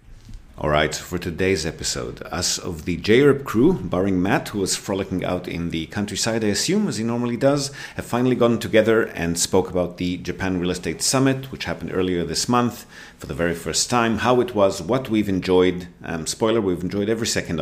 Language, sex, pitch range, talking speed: English, male, 85-110 Hz, 200 wpm